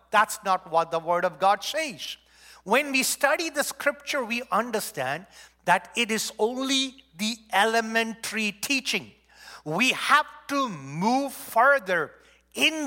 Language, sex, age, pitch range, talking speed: English, male, 50-69, 205-280 Hz, 130 wpm